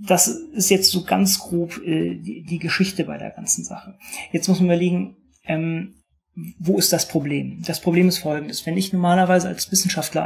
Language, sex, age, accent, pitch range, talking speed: German, male, 30-49, German, 145-180 Hz, 180 wpm